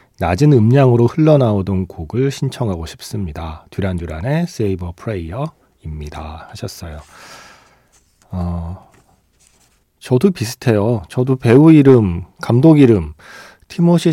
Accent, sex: native, male